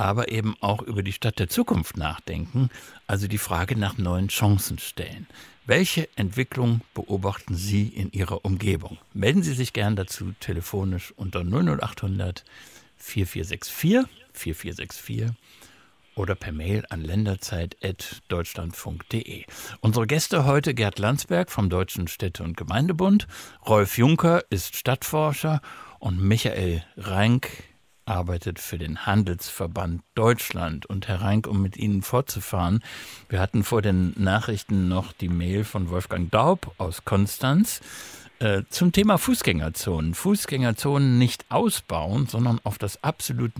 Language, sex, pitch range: German, male, 95-120 Hz